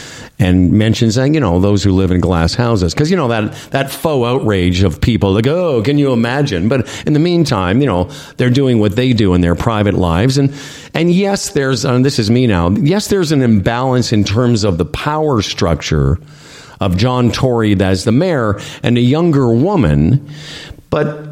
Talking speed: 200 wpm